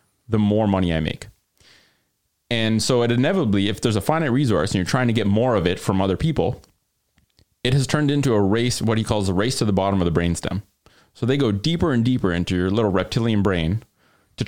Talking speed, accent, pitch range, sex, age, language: 225 wpm, American, 95-120 Hz, male, 30-49, English